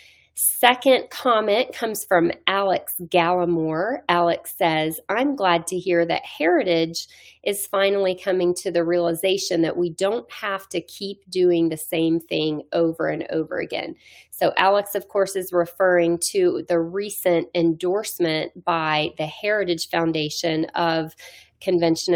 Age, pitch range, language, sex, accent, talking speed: 30-49, 165-195 Hz, English, female, American, 135 wpm